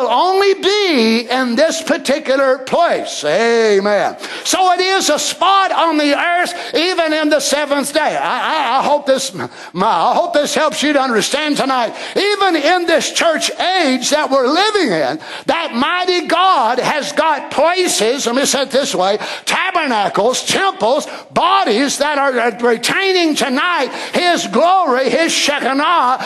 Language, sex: English, male